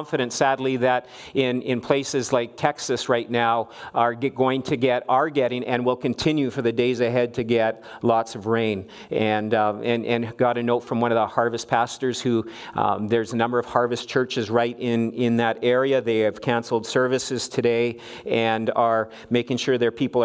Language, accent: English, American